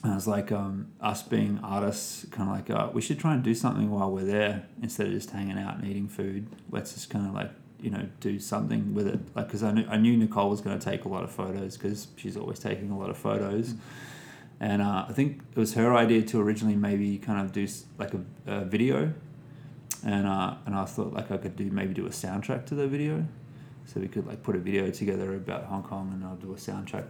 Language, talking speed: English, 250 wpm